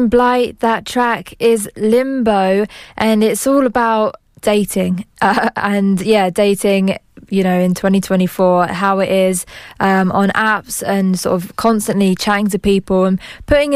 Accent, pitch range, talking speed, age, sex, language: British, 185-220 Hz, 145 wpm, 20-39, female, English